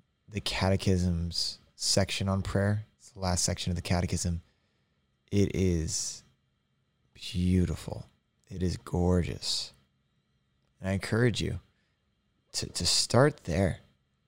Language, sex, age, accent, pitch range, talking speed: English, male, 20-39, American, 80-100 Hz, 110 wpm